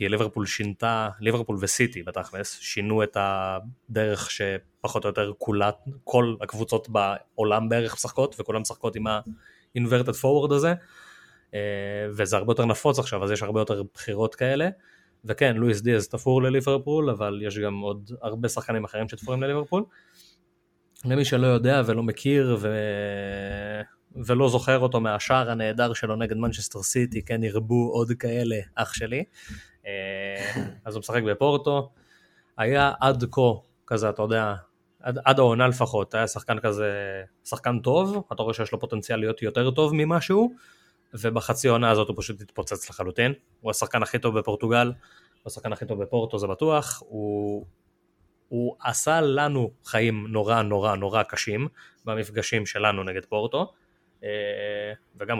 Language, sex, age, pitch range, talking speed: Hebrew, male, 20-39, 105-125 Hz, 140 wpm